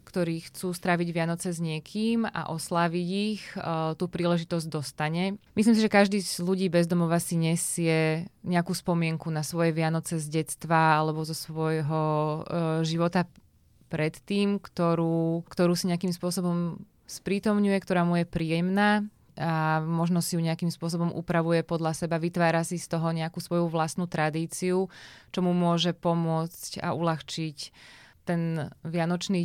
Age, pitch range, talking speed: 20-39, 165-180 Hz, 140 wpm